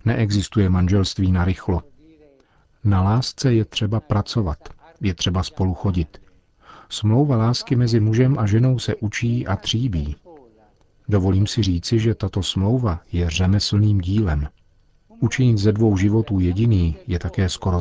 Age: 40-59